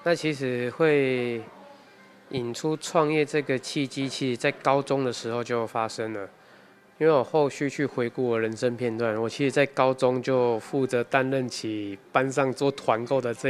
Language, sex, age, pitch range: Chinese, male, 20-39, 115-135 Hz